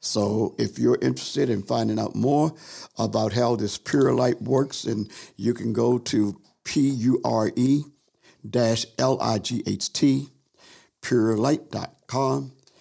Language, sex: English, male